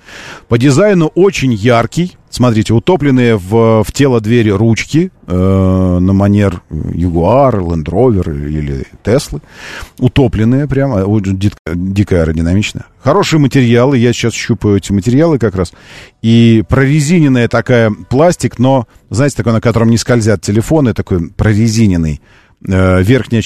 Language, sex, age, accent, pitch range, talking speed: Russian, male, 40-59, native, 95-130 Hz, 130 wpm